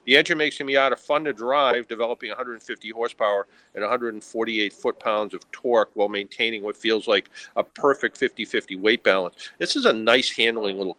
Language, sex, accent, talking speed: English, male, American, 175 wpm